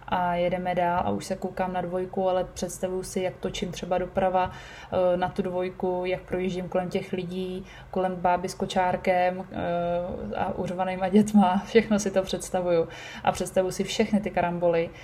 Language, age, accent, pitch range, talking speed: Czech, 20-39, native, 180-195 Hz, 165 wpm